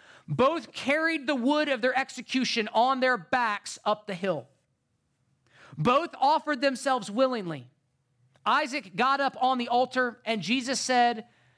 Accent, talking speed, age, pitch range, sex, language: American, 135 wpm, 40-59, 175-265 Hz, male, English